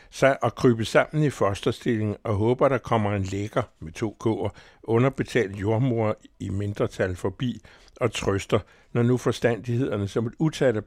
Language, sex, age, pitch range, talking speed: Danish, male, 60-79, 100-125 Hz, 145 wpm